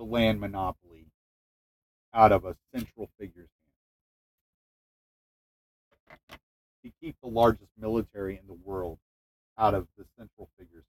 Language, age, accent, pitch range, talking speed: English, 40-59, American, 80-120 Hz, 120 wpm